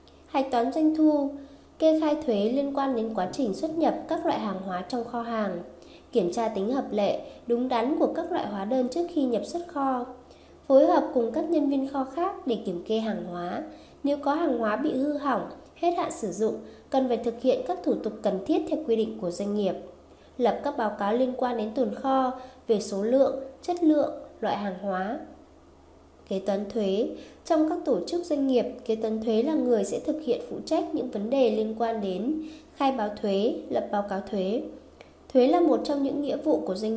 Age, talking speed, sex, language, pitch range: 20-39, 220 wpm, female, Vietnamese, 210-280 Hz